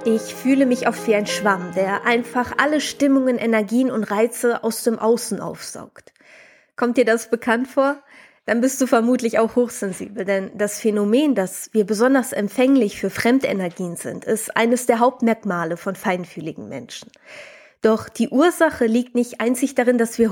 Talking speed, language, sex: 160 wpm, German, female